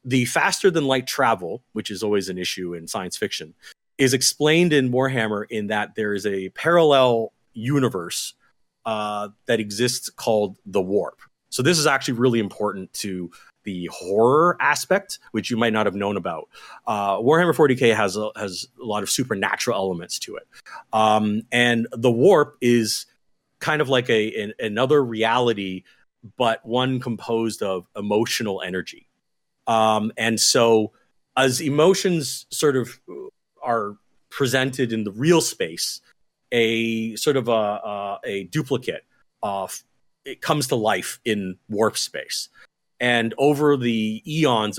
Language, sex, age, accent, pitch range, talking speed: English, male, 30-49, American, 105-130 Hz, 145 wpm